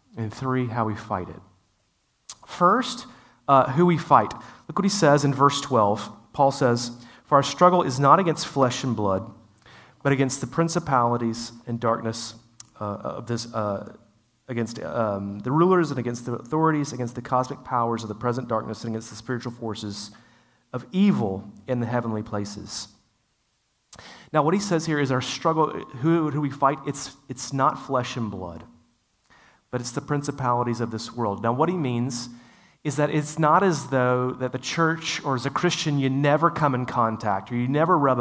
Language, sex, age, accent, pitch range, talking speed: English, male, 30-49, American, 110-145 Hz, 185 wpm